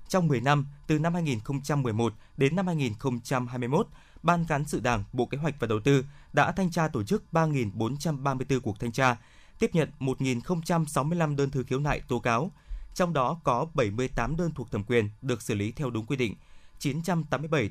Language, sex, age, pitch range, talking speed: Vietnamese, male, 20-39, 120-160 Hz, 185 wpm